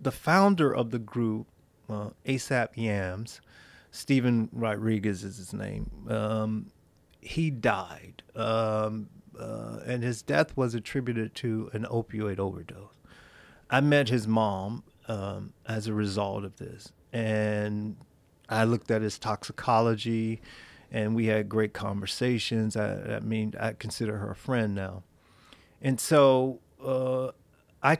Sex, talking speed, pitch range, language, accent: male, 130 wpm, 105-130 Hz, English, American